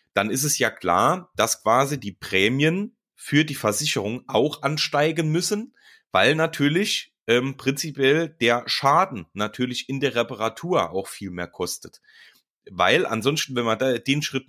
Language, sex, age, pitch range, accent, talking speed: German, male, 30-49, 115-150 Hz, German, 150 wpm